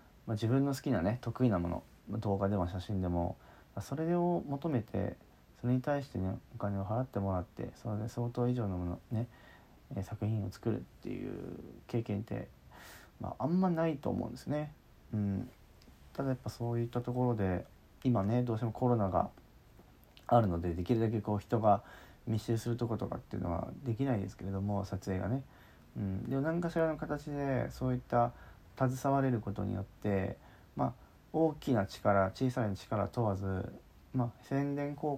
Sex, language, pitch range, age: male, Japanese, 100-125 Hz, 40-59